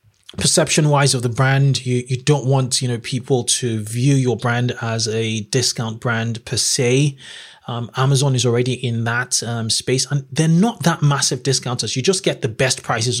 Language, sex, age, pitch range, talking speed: English, male, 20-39, 120-140 Hz, 190 wpm